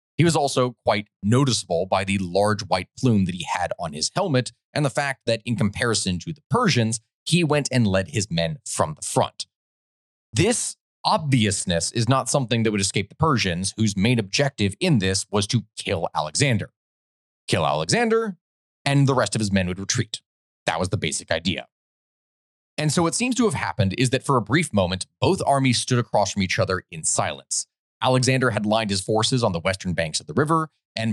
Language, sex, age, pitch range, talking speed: English, male, 30-49, 100-135 Hz, 200 wpm